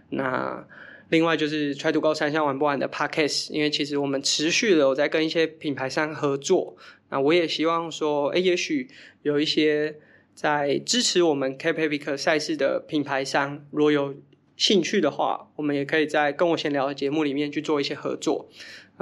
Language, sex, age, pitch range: Chinese, male, 20-39, 140-165 Hz